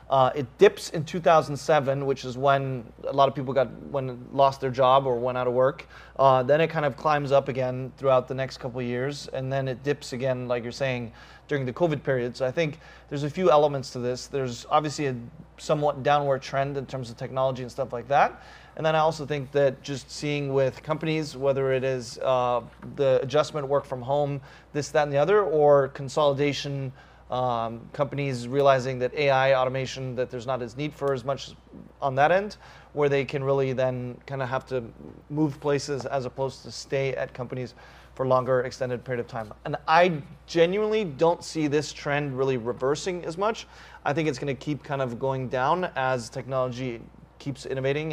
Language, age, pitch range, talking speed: English, 30-49, 125-145 Hz, 200 wpm